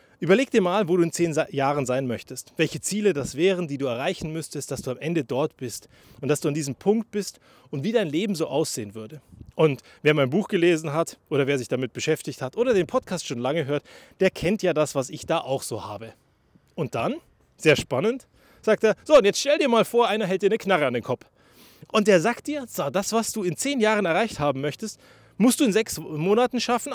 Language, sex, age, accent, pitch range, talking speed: German, male, 30-49, German, 135-205 Hz, 240 wpm